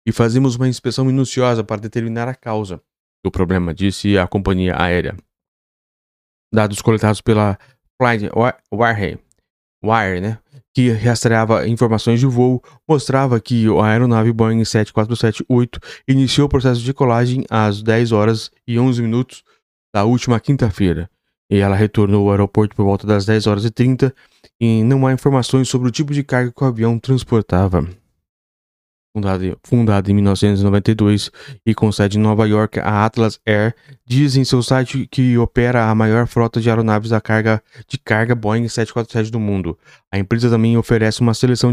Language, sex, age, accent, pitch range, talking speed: Portuguese, male, 20-39, Brazilian, 105-130 Hz, 150 wpm